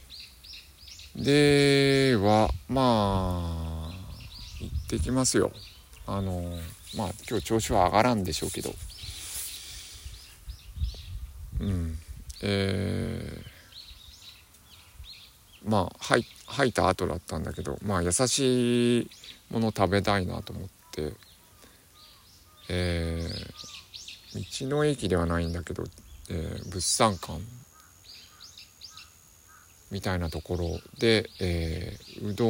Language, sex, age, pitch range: Japanese, male, 50-69, 85-105 Hz